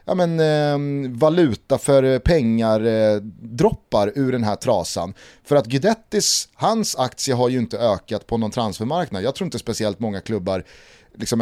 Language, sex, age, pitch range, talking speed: Swedish, male, 30-49, 110-160 Hz, 165 wpm